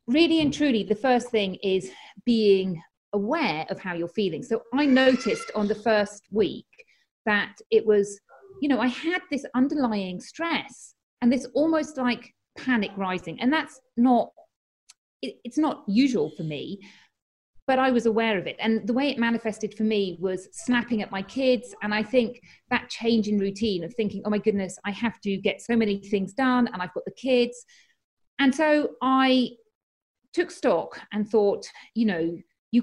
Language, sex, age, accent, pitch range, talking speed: English, female, 40-59, British, 195-255 Hz, 175 wpm